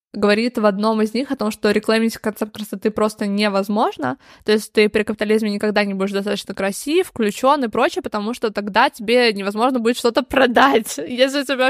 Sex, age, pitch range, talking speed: female, 20-39, 205-245 Hz, 190 wpm